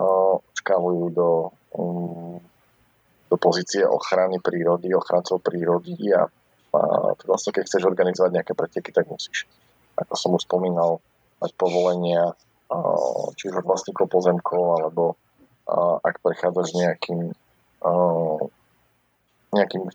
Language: Slovak